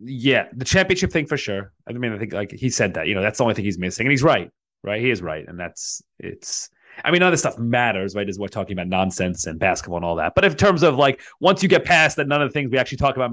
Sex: male